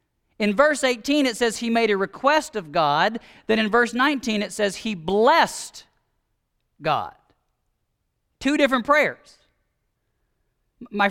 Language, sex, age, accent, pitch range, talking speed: English, male, 40-59, American, 210-275 Hz, 130 wpm